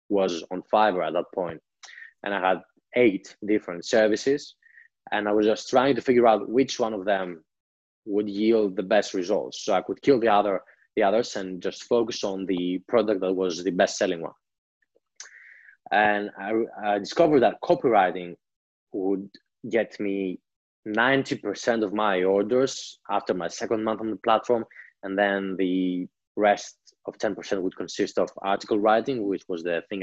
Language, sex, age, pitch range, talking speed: English, male, 20-39, 95-110 Hz, 170 wpm